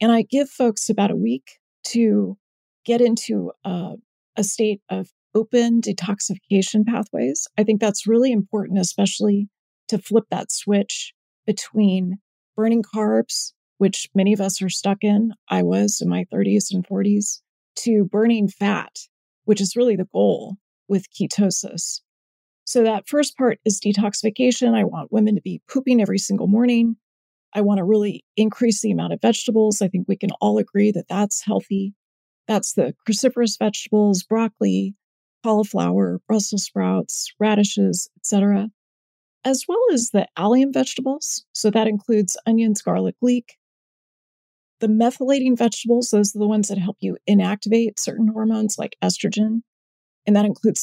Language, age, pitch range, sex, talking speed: English, 40-59, 200-230 Hz, female, 150 wpm